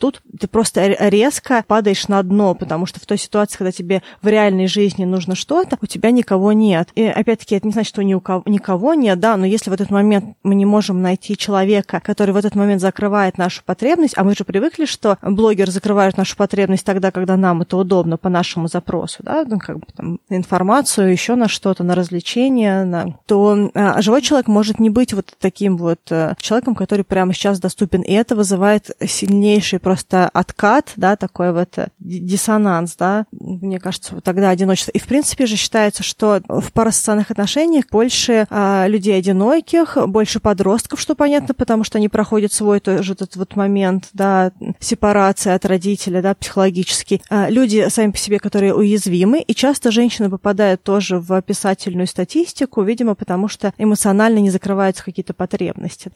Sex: female